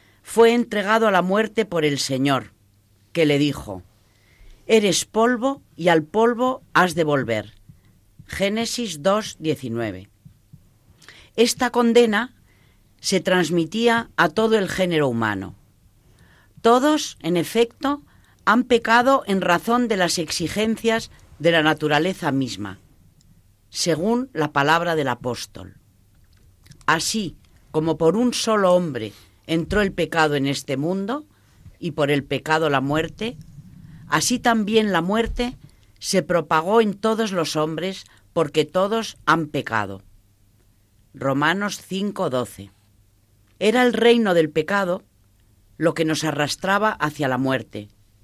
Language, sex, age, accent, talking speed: Spanish, female, 40-59, Spanish, 120 wpm